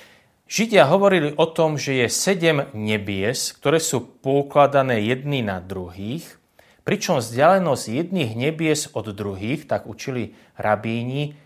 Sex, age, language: male, 30-49, Slovak